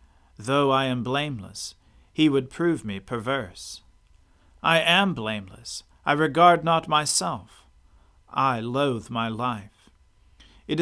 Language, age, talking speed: English, 40-59, 115 wpm